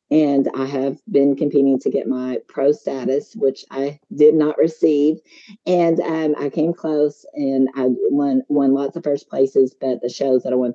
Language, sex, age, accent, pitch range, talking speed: English, female, 40-59, American, 130-155 Hz, 190 wpm